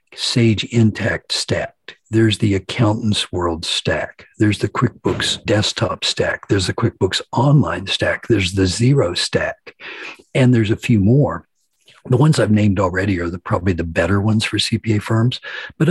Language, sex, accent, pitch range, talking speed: English, male, American, 90-115 Hz, 160 wpm